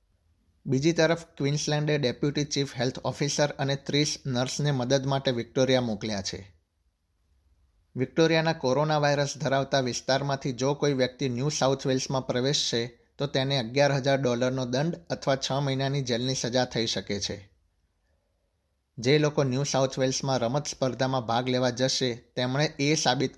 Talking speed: 130 wpm